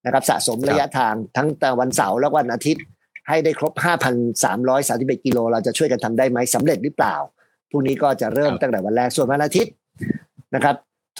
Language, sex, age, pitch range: Thai, male, 50-69, 120-145 Hz